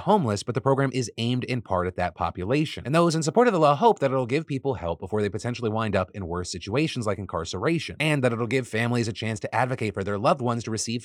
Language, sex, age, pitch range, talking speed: English, male, 30-49, 100-135 Hz, 265 wpm